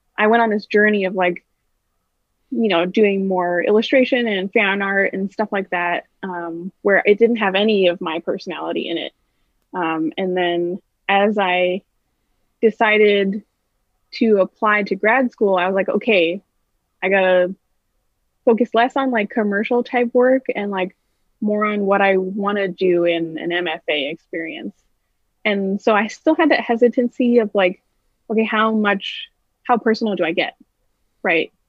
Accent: American